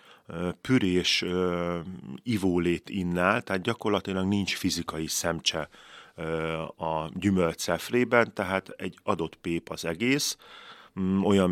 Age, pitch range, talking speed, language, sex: 30-49, 80-100 Hz, 95 wpm, Hungarian, male